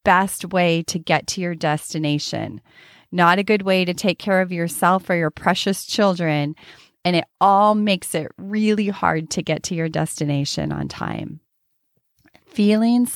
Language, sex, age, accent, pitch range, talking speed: English, female, 30-49, American, 165-210 Hz, 160 wpm